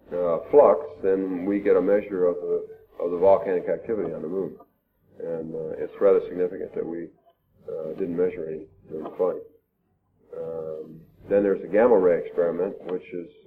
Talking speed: 170 wpm